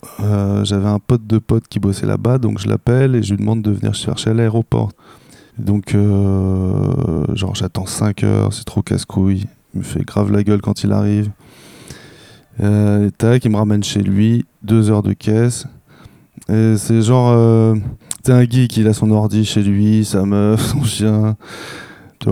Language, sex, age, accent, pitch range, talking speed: French, male, 20-39, French, 100-120 Hz, 190 wpm